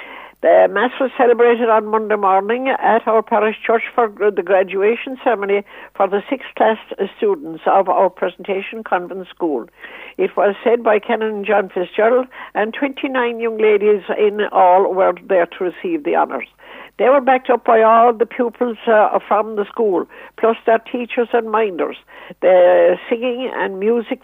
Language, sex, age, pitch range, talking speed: English, female, 60-79, 205-245 Hz, 160 wpm